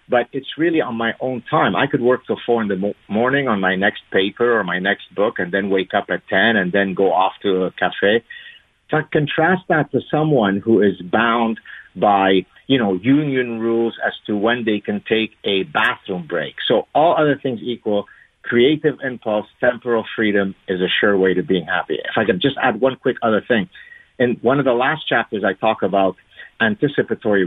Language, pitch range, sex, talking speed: English, 100-135 Hz, male, 200 wpm